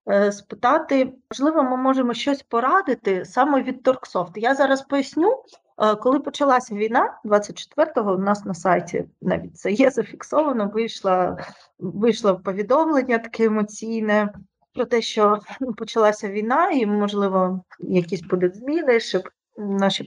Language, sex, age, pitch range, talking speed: Ukrainian, female, 30-49, 190-245 Hz, 125 wpm